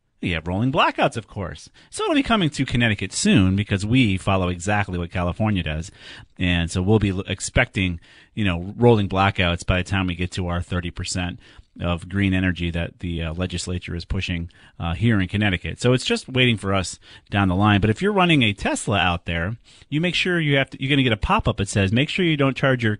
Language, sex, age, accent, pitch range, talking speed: English, male, 40-59, American, 90-110 Hz, 230 wpm